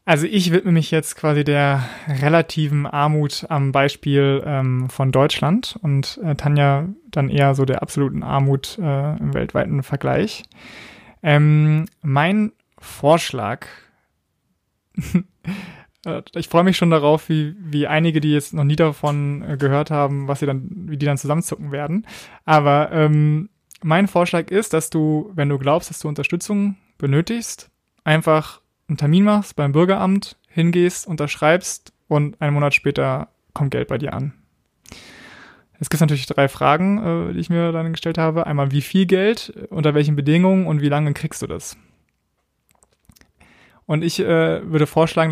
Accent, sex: German, male